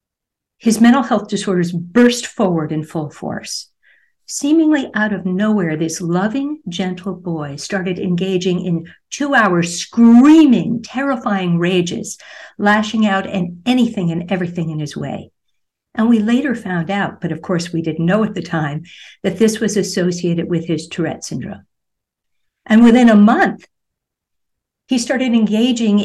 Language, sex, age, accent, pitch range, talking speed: English, female, 60-79, American, 175-225 Hz, 145 wpm